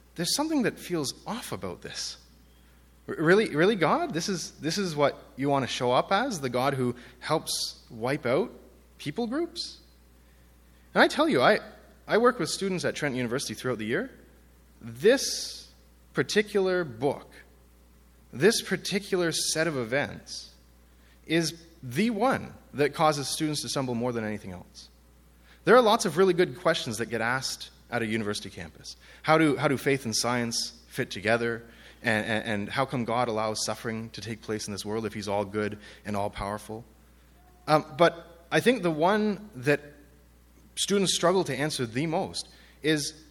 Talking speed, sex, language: 165 wpm, male, English